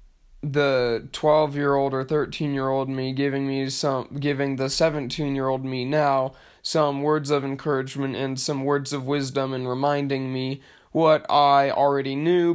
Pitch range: 130-150 Hz